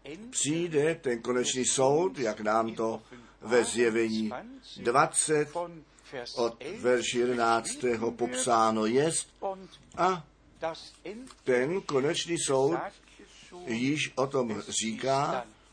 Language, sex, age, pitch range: Czech, male, 50-69, 125-165 Hz